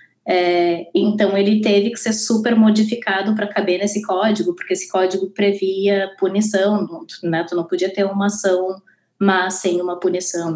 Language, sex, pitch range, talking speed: Portuguese, female, 185-225 Hz, 165 wpm